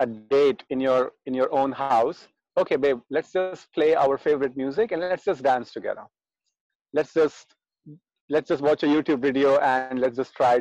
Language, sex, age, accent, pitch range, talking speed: English, male, 30-49, Indian, 125-150 Hz, 185 wpm